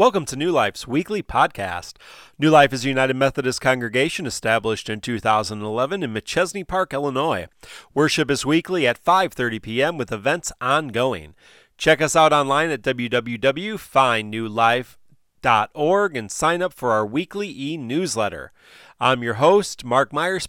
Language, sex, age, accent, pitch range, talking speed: English, male, 30-49, American, 120-170 Hz, 140 wpm